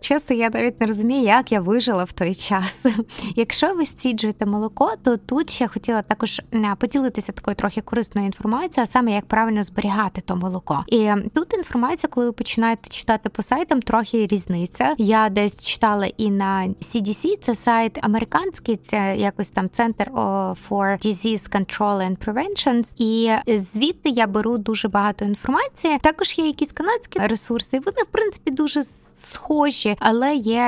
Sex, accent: female, native